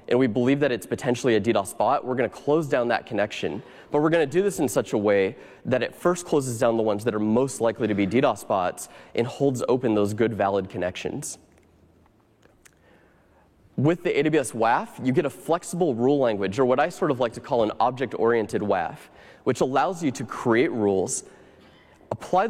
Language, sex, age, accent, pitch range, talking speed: English, male, 20-39, American, 110-145 Hz, 195 wpm